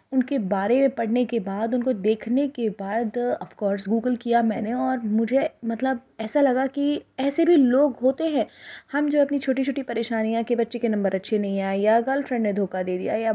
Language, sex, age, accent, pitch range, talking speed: Hindi, female, 20-39, native, 205-255 Hz, 205 wpm